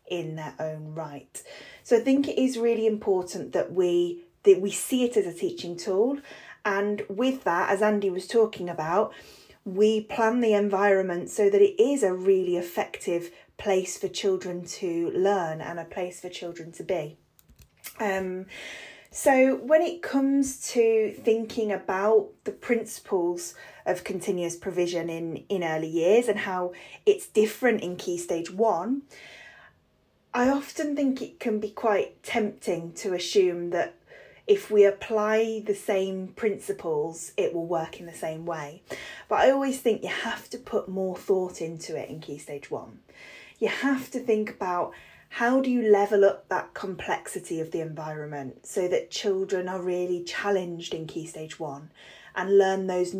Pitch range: 175-230 Hz